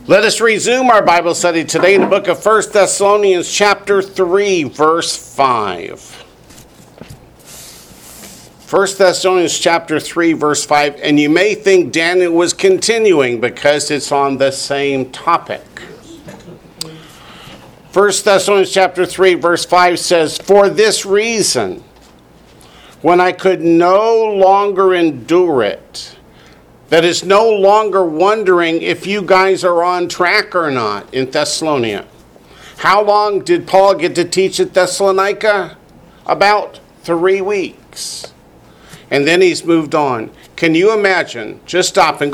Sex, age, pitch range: male, 50-69, 165-200 Hz